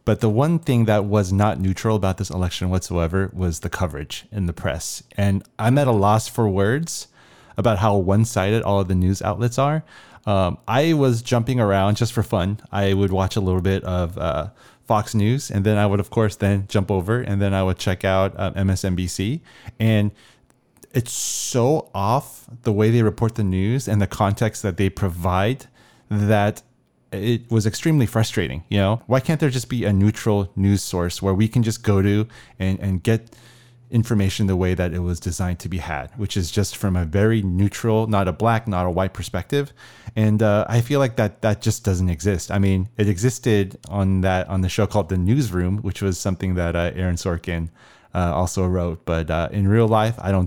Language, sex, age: English, male, 30-49